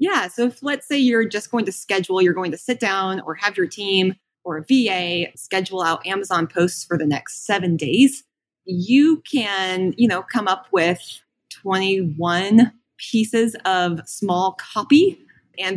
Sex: female